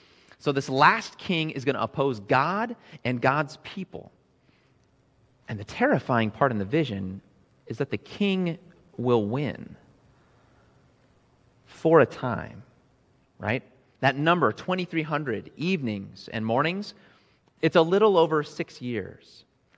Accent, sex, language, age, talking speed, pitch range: American, male, English, 30-49, 125 wpm, 115-150 Hz